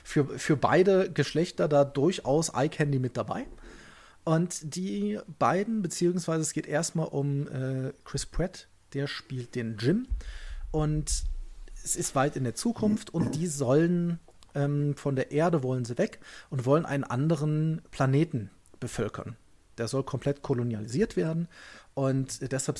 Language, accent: German, German